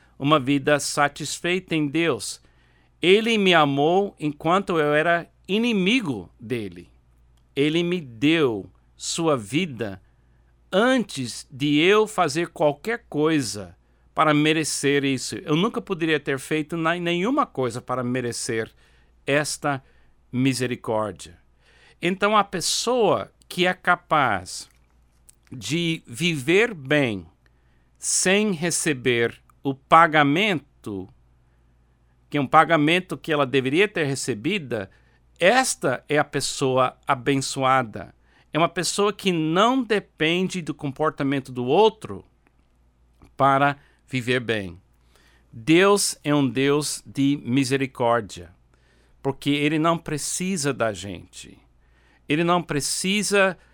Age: 60-79